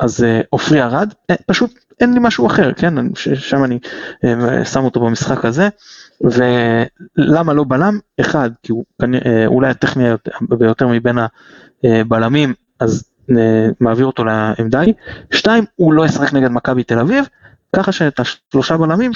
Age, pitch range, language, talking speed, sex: 20-39, 120-145 Hz, Hebrew, 140 wpm, male